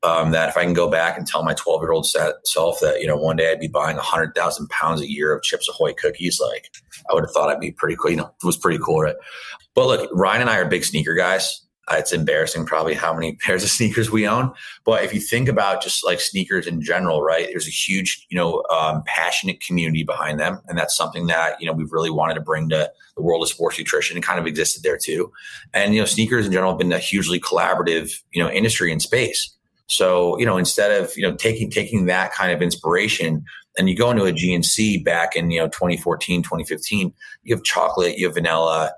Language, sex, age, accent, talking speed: English, male, 30-49, American, 245 wpm